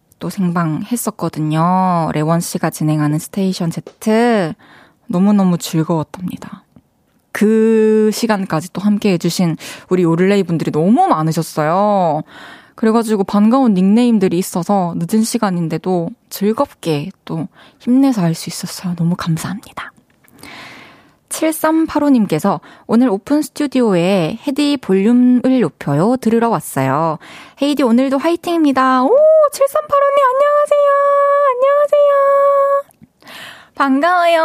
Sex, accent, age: female, native, 20-39